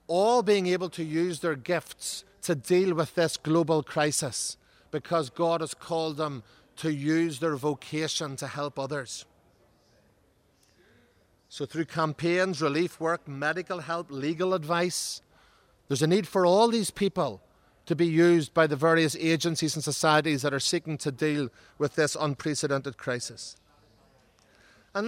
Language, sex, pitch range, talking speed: English, male, 150-180 Hz, 145 wpm